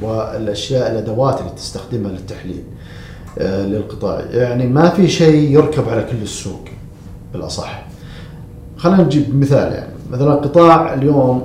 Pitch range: 110-150 Hz